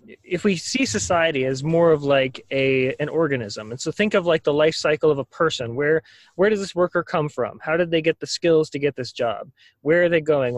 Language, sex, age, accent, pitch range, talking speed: English, male, 20-39, American, 135-180 Hz, 245 wpm